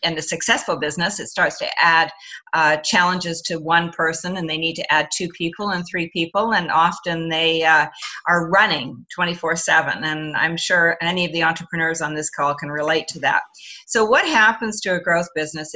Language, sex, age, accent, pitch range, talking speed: English, female, 50-69, American, 160-195 Hz, 200 wpm